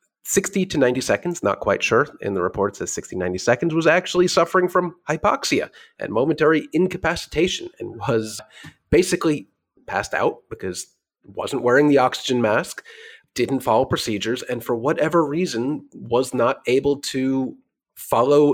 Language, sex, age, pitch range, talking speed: English, male, 30-49, 110-165 Hz, 150 wpm